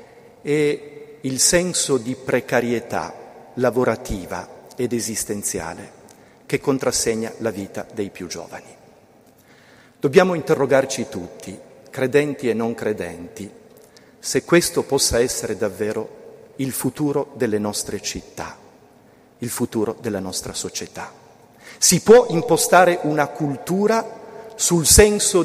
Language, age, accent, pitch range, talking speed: Italian, 40-59, native, 115-150 Hz, 105 wpm